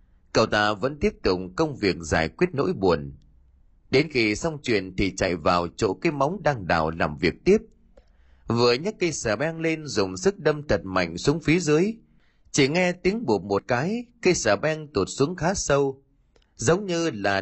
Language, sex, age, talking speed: Vietnamese, male, 30-49, 195 wpm